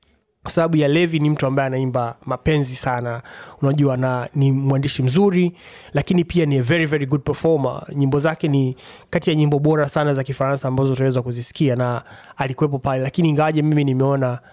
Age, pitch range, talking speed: 30-49, 125-145 Hz, 175 wpm